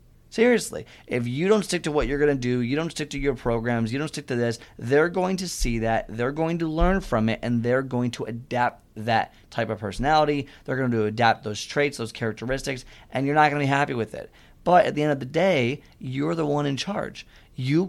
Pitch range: 115-145 Hz